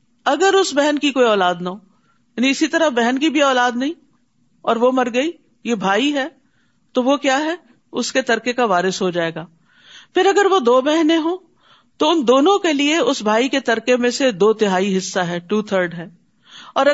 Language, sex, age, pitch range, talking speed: Urdu, female, 50-69, 200-275 Hz, 210 wpm